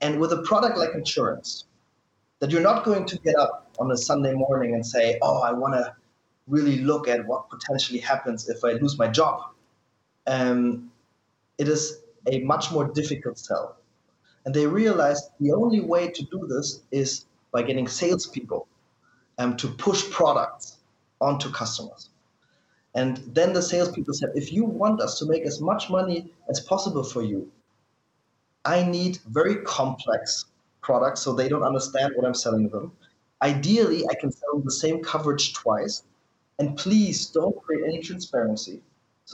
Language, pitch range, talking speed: English, 130-170 Hz, 165 wpm